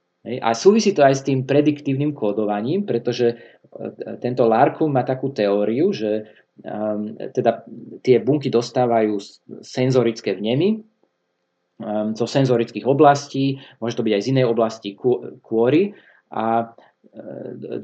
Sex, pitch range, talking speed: male, 115-145 Hz, 125 wpm